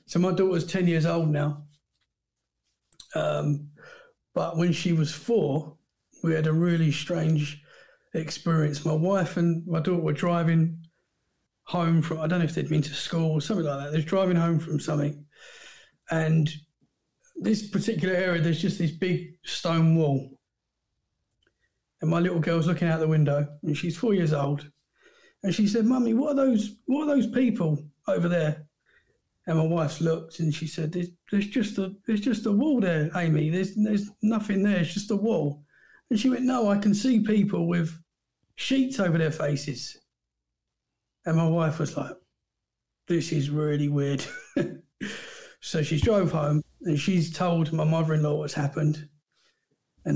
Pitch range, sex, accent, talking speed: 155-195 Hz, male, British, 165 wpm